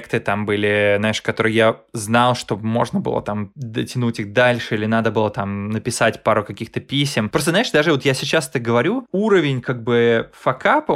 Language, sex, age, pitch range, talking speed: Russian, male, 20-39, 115-150 Hz, 180 wpm